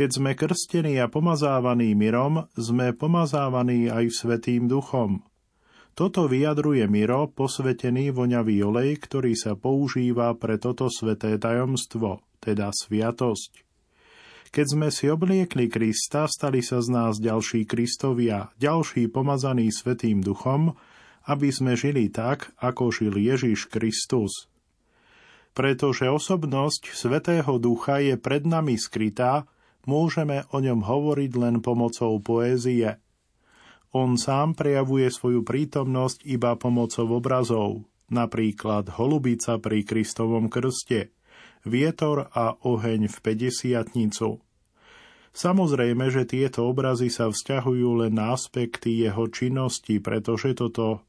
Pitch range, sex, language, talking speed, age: 115-140 Hz, male, Slovak, 110 wpm, 40-59